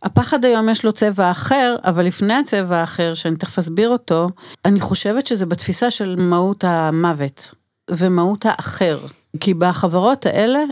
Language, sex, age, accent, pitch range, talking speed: Hebrew, female, 40-59, native, 175-220 Hz, 145 wpm